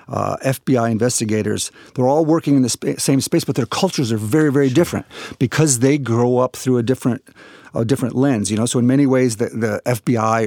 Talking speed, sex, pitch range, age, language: 205 wpm, male, 110-135 Hz, 50-69, English